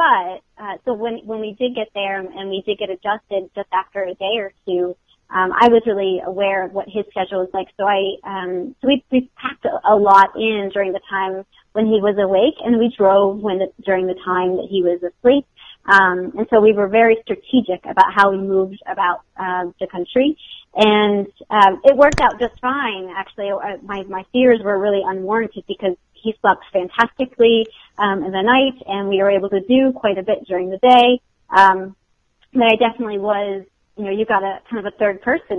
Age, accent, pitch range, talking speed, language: 30-49, American, 190-220 Hz, 210 wpm, English